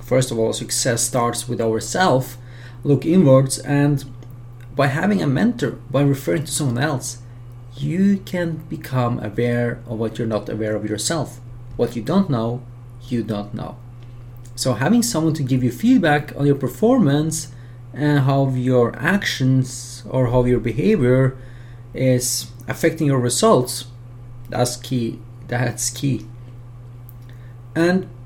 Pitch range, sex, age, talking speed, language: 120-135 Hz, male, 30-49, 135 wpm, English